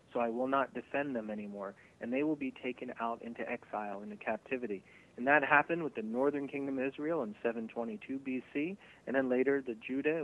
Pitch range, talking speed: 115-150 Hz, 215 wpm